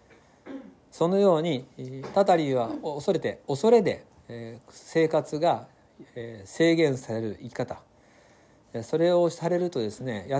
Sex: male